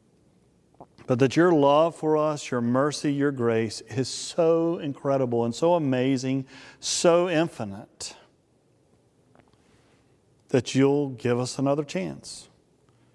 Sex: male